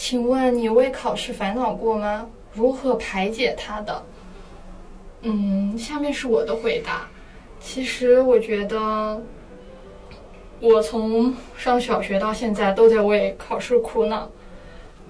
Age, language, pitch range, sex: 20-39, Chinese, 215-255 Hz, female